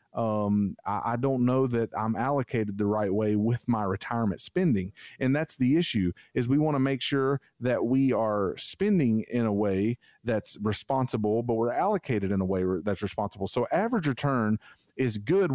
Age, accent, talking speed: 40-59, American, 180 wpm